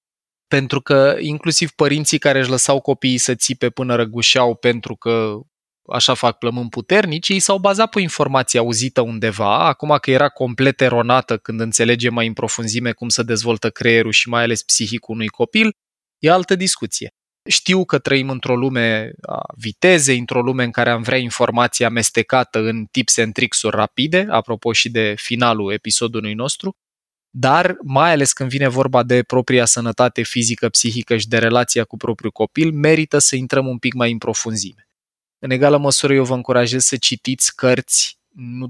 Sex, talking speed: male, 170 wpm